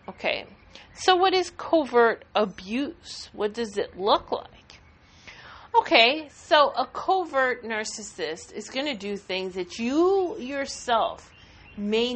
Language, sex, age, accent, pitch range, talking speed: English, female, 40-59, American, 195-250 Hz, 125 wpm